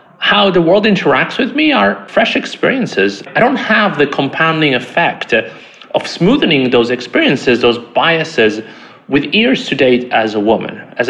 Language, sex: English, male